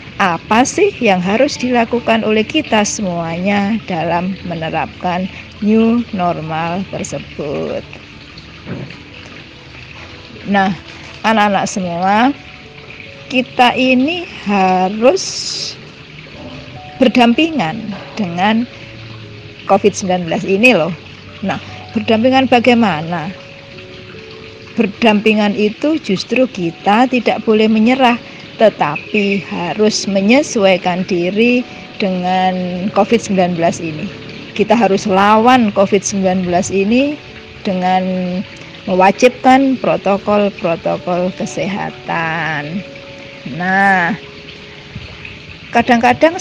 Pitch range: 185-235 Hz